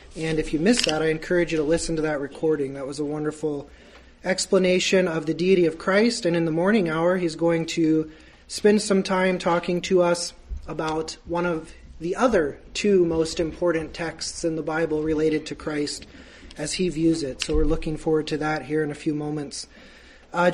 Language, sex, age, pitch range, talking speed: English, male, 30-49, 155-185 Hz, 200 wpm